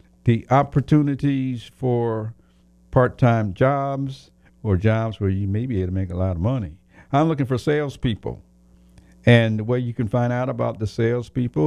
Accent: American